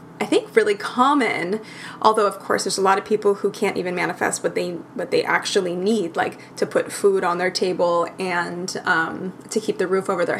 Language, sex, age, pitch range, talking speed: English, female, 20-39, 185-225 Hz, 215 wpm